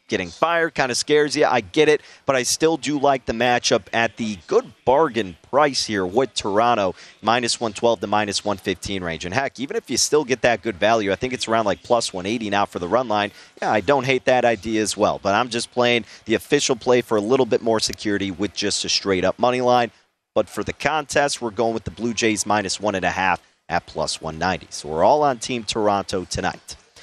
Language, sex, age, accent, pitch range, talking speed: English, male, 30-49, American, 105-135 Hz, 235 wpm